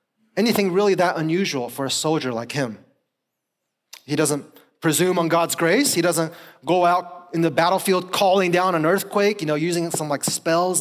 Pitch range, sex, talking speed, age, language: 150-200 Hz, male, 180 wpm, 30-49, English